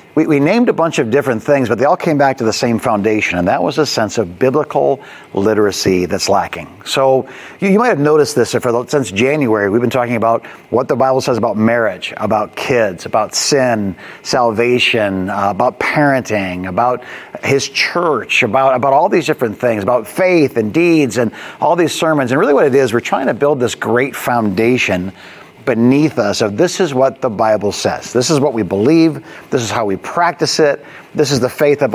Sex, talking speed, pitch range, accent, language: male, 205 wpm, 115-150 Hz, American, English